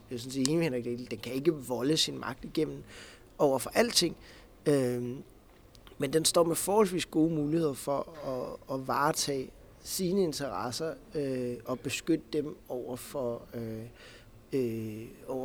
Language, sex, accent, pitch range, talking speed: Danish, male, native, 120-145 Hz, 130 wpm